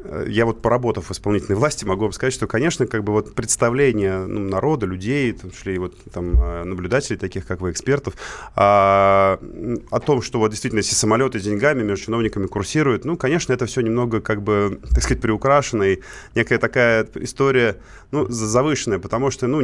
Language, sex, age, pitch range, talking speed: Russian, male, 30-49, 100-125 Hz, 180 wpm